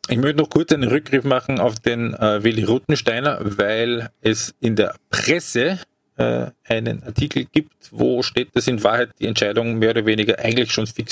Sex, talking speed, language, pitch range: male, 185 wpm, German, 115-140 Hz